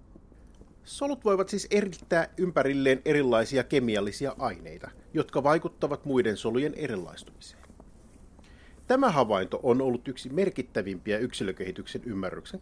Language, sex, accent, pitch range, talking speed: Finnish, male, native, 115-170 Hz, 100 wpm